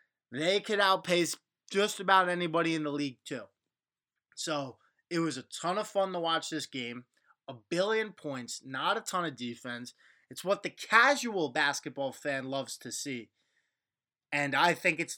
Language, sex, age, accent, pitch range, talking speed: English, male, 20-39, American, 140-185 Hz, 165 wpm